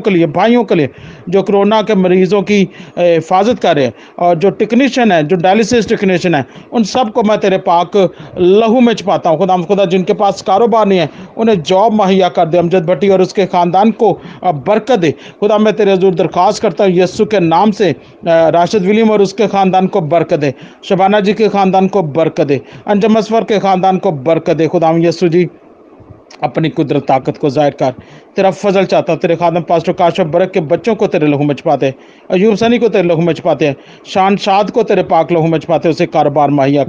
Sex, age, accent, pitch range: male, 40-59, native, 165-200 Hz